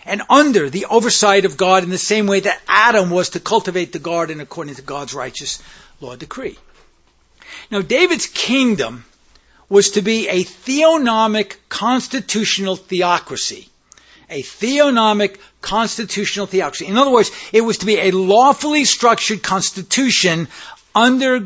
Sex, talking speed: male, 135 wpm